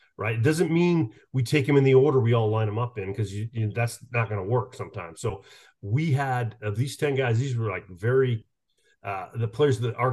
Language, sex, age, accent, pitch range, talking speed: English, male, 40-59, American, 105-130 Hz, 250 wpm